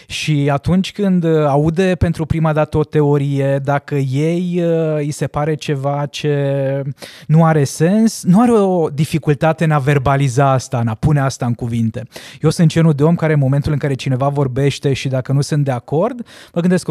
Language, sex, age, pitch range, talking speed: Romanian, male, 20-39, 140-190 Hz, 190 wpm